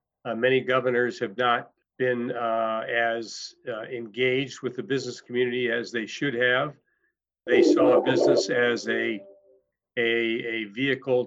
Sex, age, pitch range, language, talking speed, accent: male, 50-69, 115-130 Hz, English, 145 wpm, American